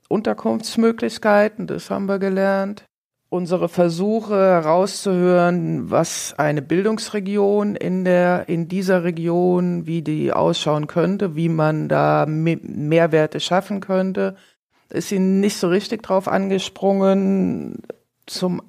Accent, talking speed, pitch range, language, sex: German, 110 wpm, 155-195 Hz, German, female